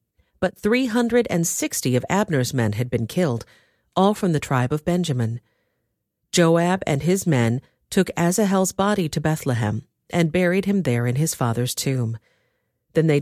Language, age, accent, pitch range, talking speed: English, 50-69, American, 125-185 Hz, 150 wpm